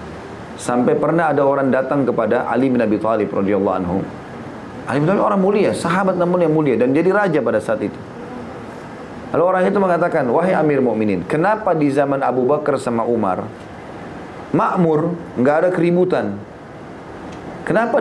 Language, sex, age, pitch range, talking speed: Indonesian, male, 30-49, 115-175 Hz, 155 wpm